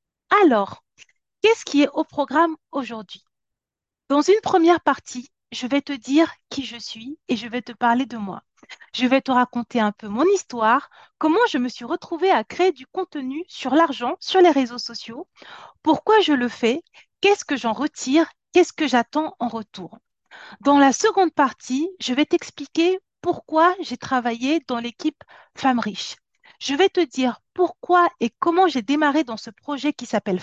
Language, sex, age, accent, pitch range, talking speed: French, female, 40-59, French, 245-335 Hz, 175 wpm